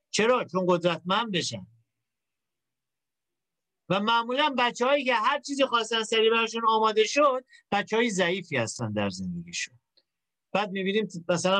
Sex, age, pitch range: male, 50-69, 165-220 Hz